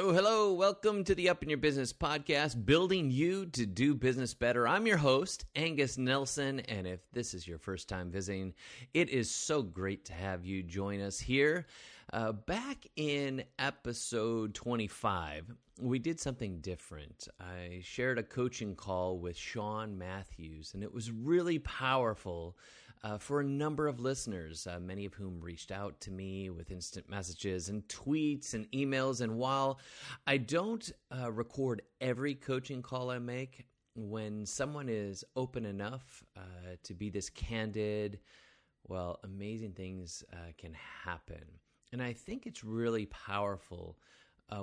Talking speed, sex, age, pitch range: 155 wpm, male, 30-49, 95-130 Hz